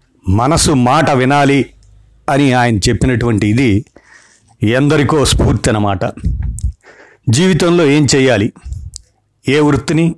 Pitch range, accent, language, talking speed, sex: 110-140 Hz, native, Telugu, 90 wpm, male